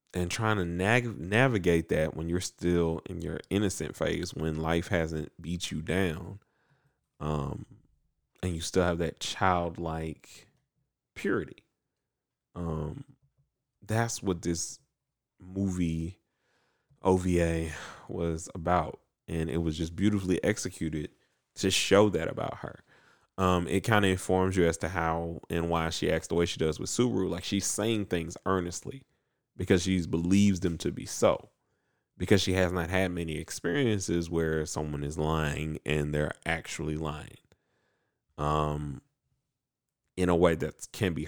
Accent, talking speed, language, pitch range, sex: American, 140 wpm, English, 80-95 Hz, male